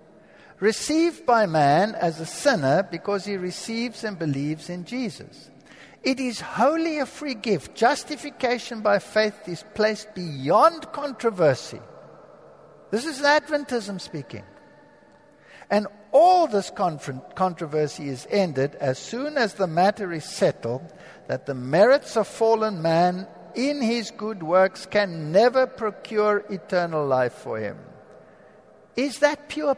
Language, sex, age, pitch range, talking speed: Danish, male, 60-79, 190-265 Hz, 125 wpm